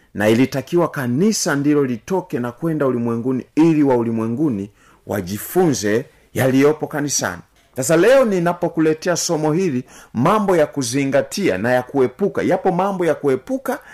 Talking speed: 130 wpm